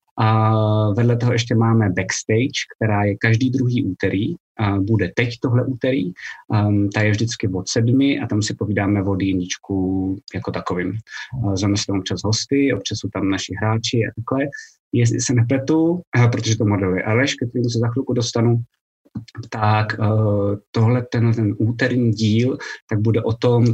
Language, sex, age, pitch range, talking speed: Czech, male, 20-39, 105-120 Hz, 150 wpm